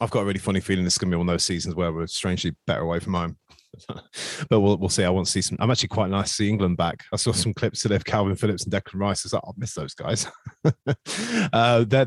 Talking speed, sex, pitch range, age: 300 wpm, male, 90-115 Hz, 20-39